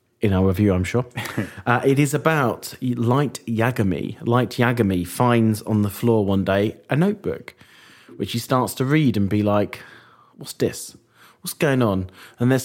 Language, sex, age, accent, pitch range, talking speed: English, male, 30-49, British, 100-125 Hz, 170 wpm